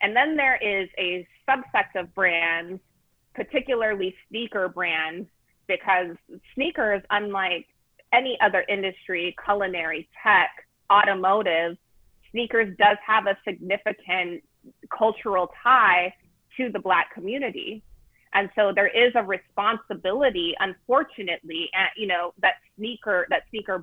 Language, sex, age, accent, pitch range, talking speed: English, female, 30-49, American, 185-235 Hz, 115 wpm